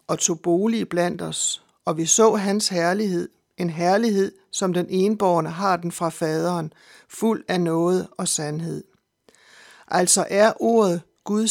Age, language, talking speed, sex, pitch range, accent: 60-79, Danish, 145 wpm, male, 170-205 Hz, native